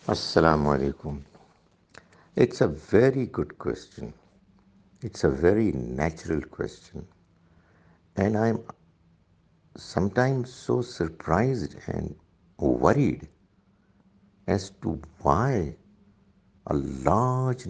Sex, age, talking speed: male, 60-79, 80 wpm